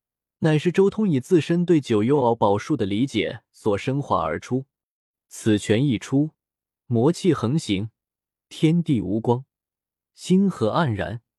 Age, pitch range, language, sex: 20-39, 110-170 Hz, Chinese, male